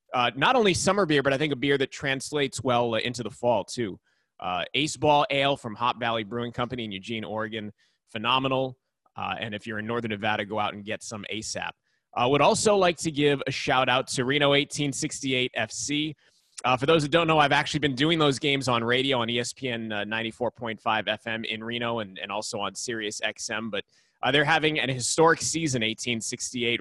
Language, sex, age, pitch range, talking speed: English, male, 20-39, 115-140 Hz, 205 wpm